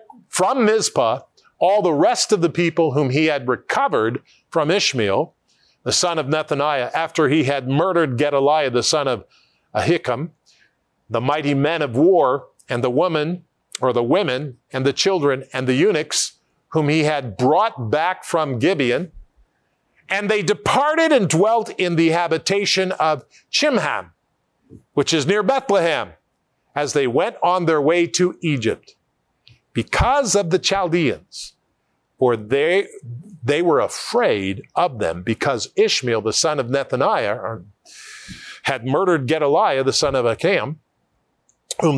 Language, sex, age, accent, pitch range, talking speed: English, male, 50-69, American, 130-185 Hz, 140 wpm